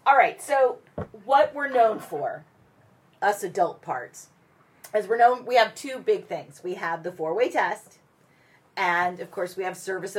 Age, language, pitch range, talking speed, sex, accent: 30-49, English, 170-215 Hz, 170 wpm, female, American